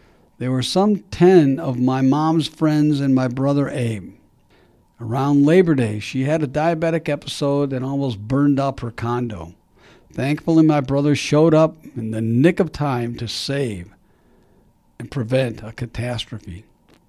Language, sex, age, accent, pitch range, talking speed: English, male, 60-79, American, 115-150 Hz, 150 wpm